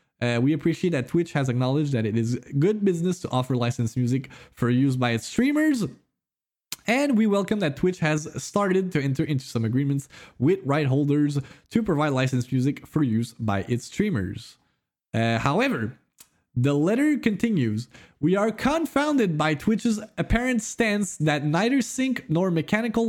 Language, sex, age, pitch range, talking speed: French, male, 20-39, 135-210 Hz, 160 wpm